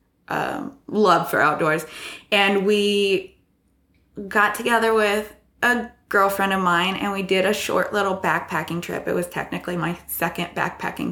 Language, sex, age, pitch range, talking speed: German, female, 20-39, 170-205 Hz, 140 wpm